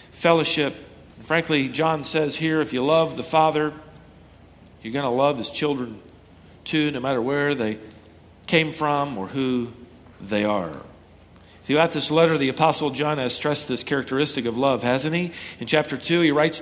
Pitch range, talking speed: 135-195 Hz, 165 wpm